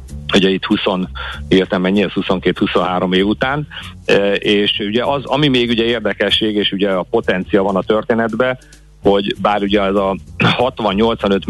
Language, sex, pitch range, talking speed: Hungarian, male, 90-105 Hz, 155 wpm